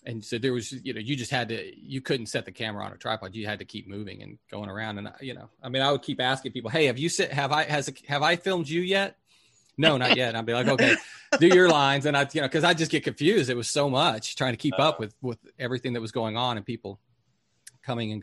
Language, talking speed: English, 285 wpm